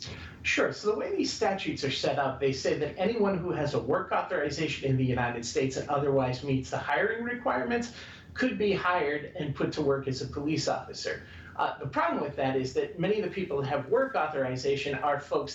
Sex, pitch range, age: male, 135-175 Hz, 40-59